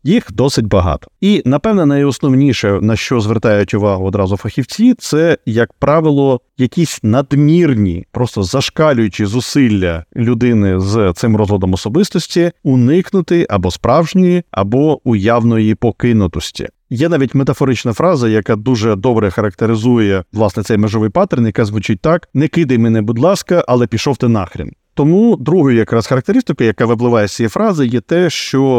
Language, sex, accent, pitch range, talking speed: Ukrainian, male, native, 105-140 Hz, 140 wpm